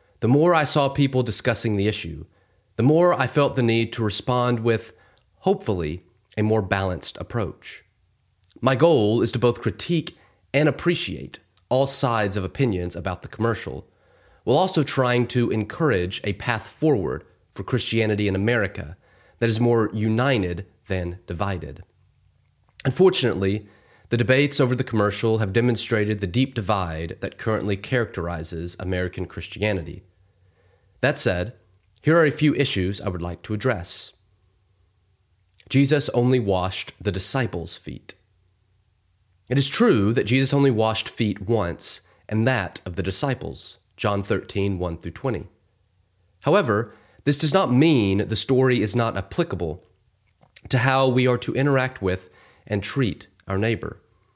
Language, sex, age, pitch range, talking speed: English, male, 30-49, 95-130 Hz, 140 wpm